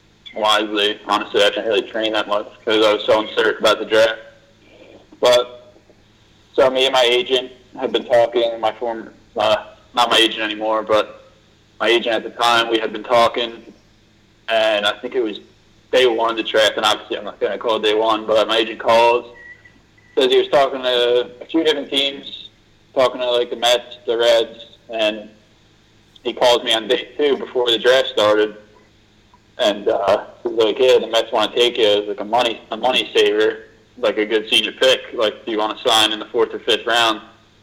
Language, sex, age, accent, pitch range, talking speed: English, male, 20-39, American, 110-140 Hz, 200 wpm